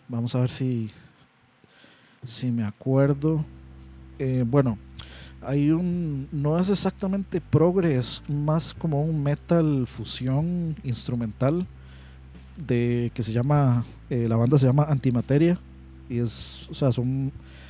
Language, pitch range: Spanish, 120-145 Hz